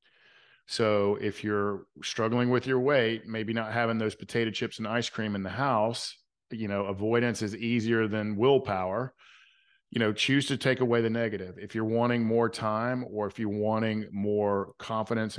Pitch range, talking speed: 105-120 Hz, 175 wpm